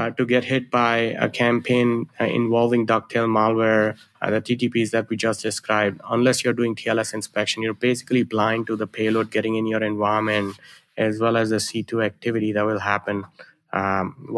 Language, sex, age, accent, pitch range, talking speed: English, male, 20-39, Indian, 105-115 Hz, 180 wpm